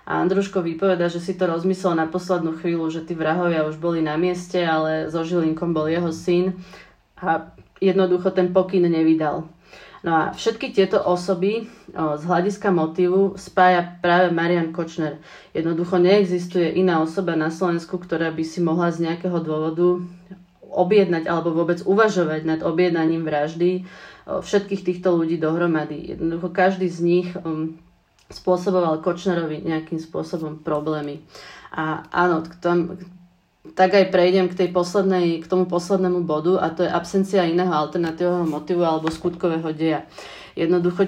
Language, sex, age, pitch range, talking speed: Czech, female, 30-49, 165-185 Hz, 140 wpm